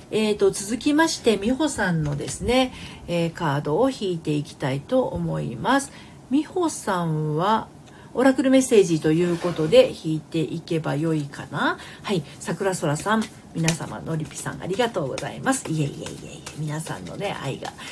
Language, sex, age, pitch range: Japanese, female, 40-59, 155-210 Hz